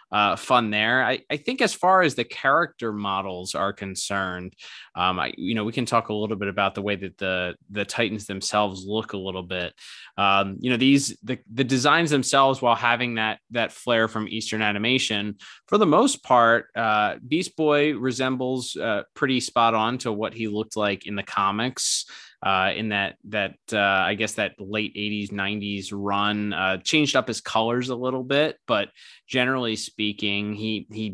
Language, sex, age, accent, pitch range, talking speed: English, male, 20-39, American, 105-125 Hz, 185 wpm